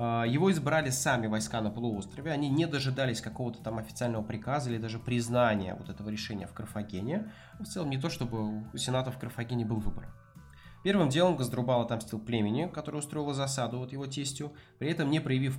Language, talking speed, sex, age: Russian, 180 wpm, male, 20-39